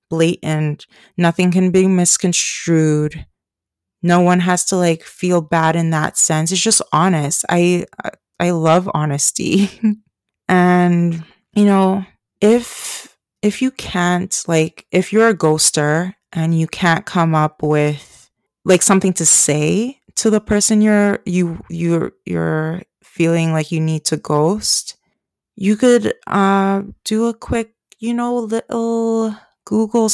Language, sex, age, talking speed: English, female, 20-39, 135 wpm